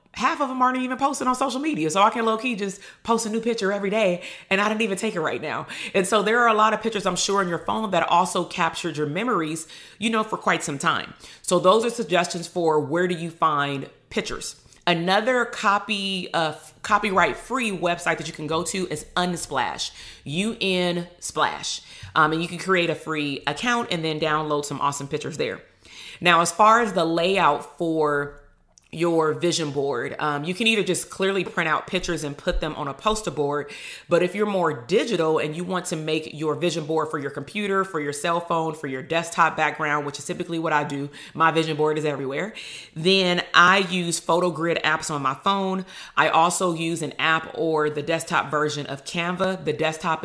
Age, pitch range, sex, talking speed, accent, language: 30-49, 150-190 Hz, female, 210 wpm, American, English